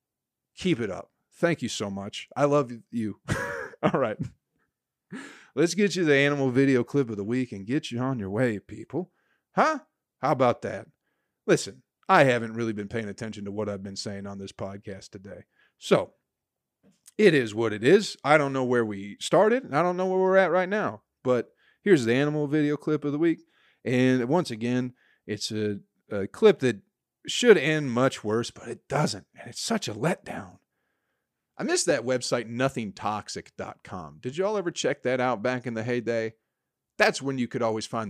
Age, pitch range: 40-59, 110-140 Hz